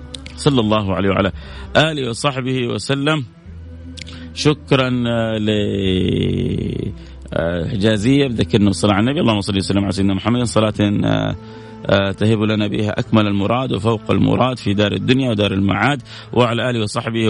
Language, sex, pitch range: Arabic, male, 100-120 Hz